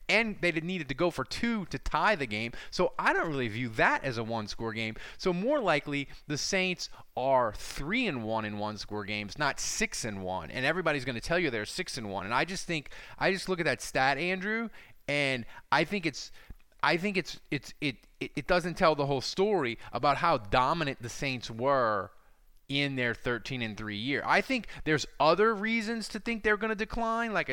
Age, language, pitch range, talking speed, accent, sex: 30-49, English, 115-175 Hz, 220 wpm, American, male